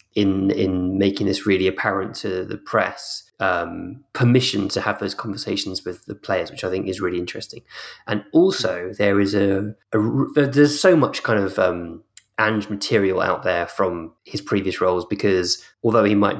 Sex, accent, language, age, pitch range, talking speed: male, British, English, 20-39, 95-110 Hz, 175 wpm